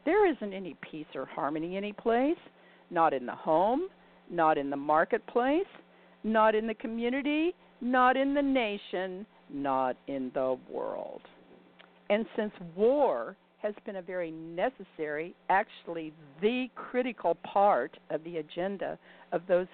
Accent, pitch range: American, 155-230 Hz